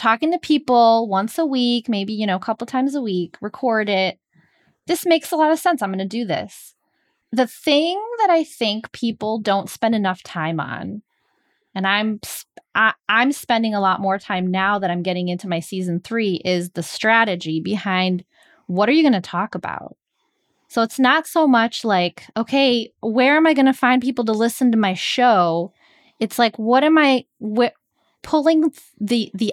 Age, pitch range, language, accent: 20-39, 190-255 Hz, English, American